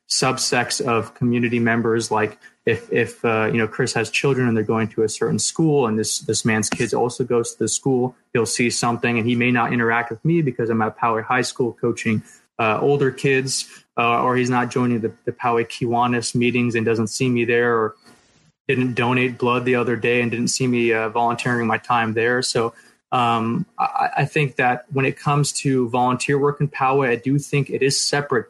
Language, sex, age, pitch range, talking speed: English, male, 20-39, 115-130 Hz, 215 wpm